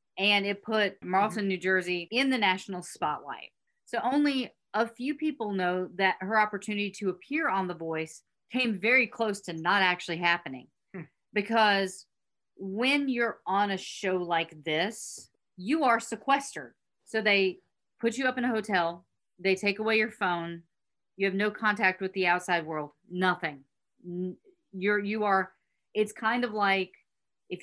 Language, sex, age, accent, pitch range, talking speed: English, female, 40-59, American, 175-210 Hz, 155 wpm